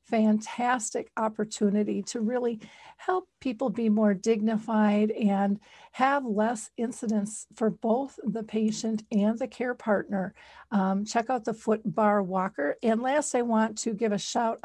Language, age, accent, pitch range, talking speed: English, 50-69, American, 210-240 Hz, 150 wpm